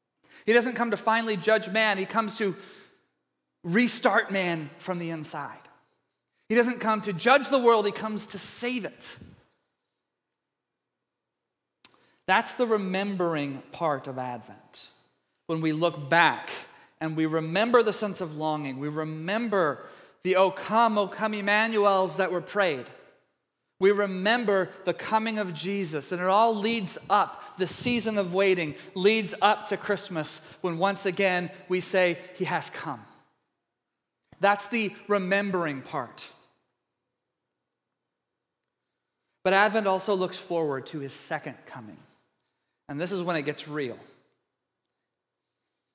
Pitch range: 160-205 Hz